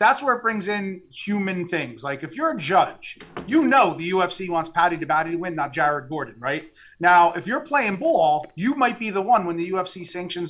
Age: 30-49